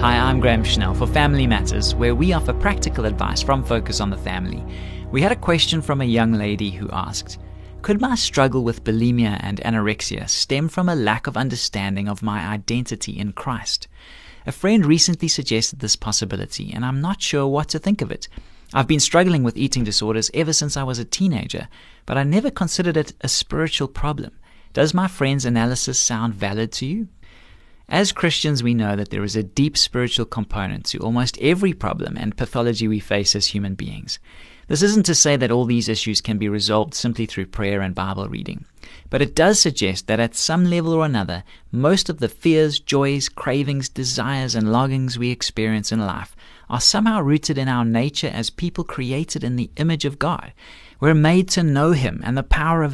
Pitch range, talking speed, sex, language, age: 105-150 Hz, 195 wpm, male, English, 30-49